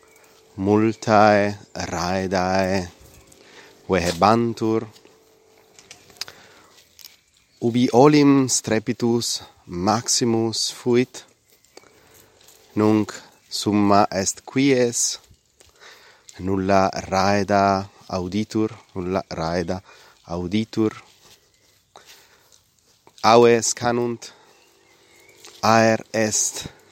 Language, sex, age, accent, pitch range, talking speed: Italian, male, 30-49, native, 95-120 Hz, 50 wpm